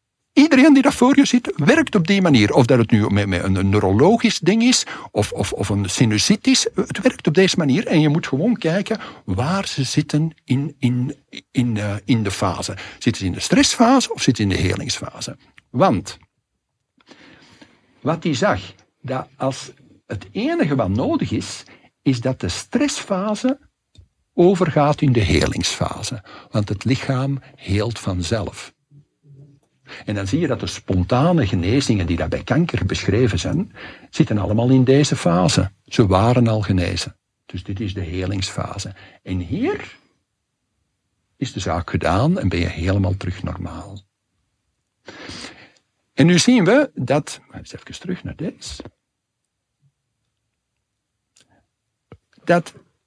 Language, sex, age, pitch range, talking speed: English, male, 60-79, 100-160 Hz, 150 wpm